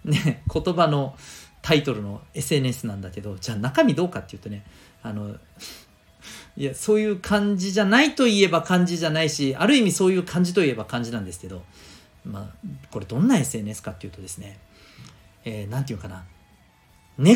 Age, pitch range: 40-59, 105-160 Hz